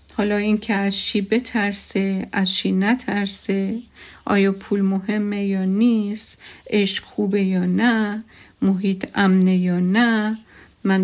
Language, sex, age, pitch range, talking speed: Persian, female, 50-69, 190-225 Hz, 125 wpm